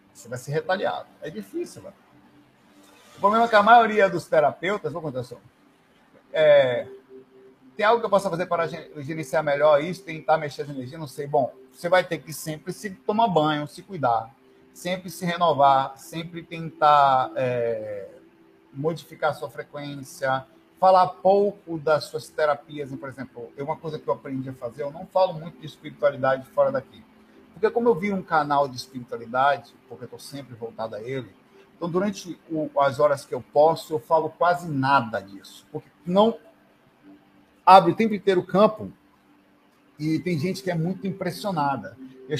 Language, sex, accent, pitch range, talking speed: Portuguese, male, Brazilian, 135-180 Hz, 170 wpm